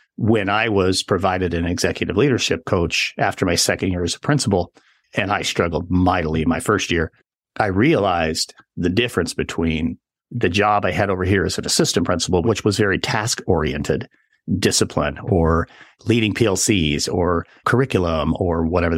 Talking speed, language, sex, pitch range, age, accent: 160 wpm, English, male, 85-105 Hz, 50-69, American